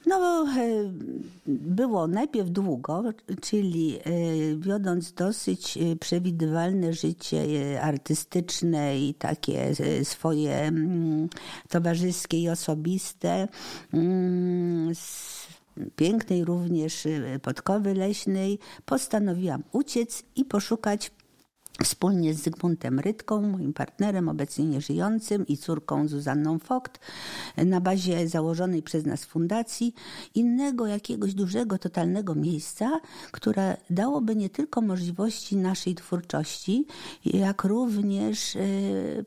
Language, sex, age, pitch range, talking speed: Polish, female, 50-69, 160-215 Hz, 90 wpm